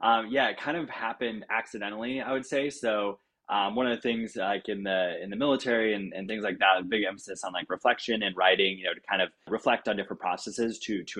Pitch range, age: 95-105 Hz, 20-39